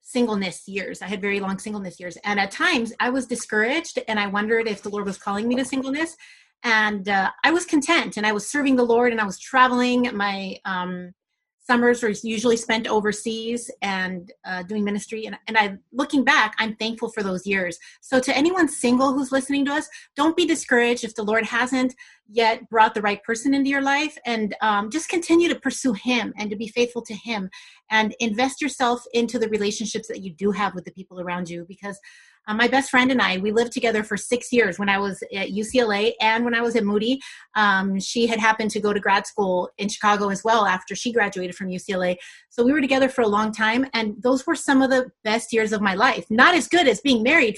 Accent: American